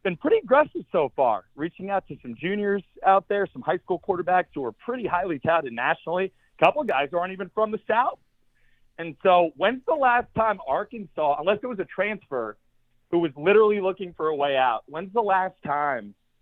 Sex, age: male, 40-59